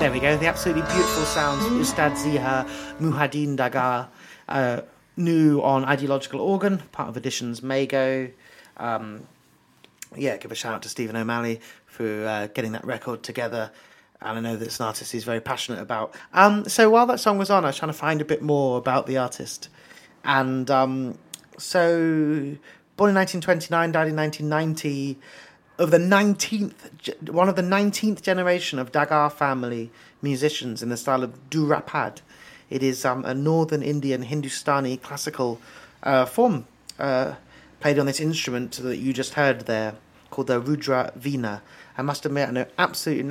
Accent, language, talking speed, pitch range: British, English, 170 wpm, 125-155 Hz